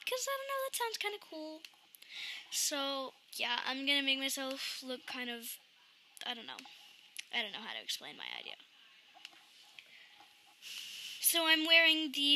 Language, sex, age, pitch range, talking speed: English, female, 10-29, 245-325 Hz, 165 wpm